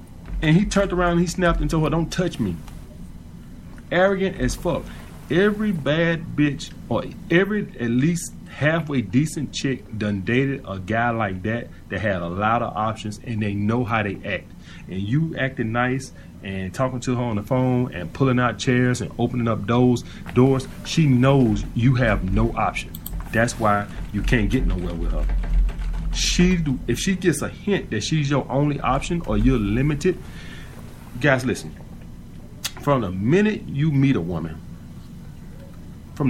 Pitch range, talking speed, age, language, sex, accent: 95-145 Hz, 170 wpm, 30-49, English, male, American